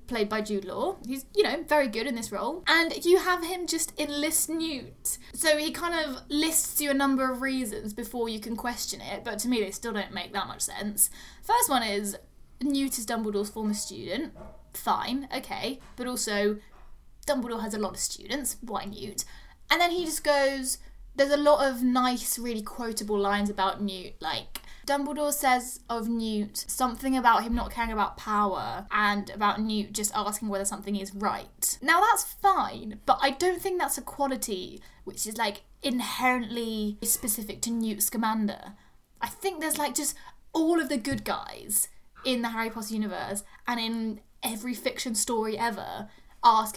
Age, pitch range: 10-29, 210-275 Hz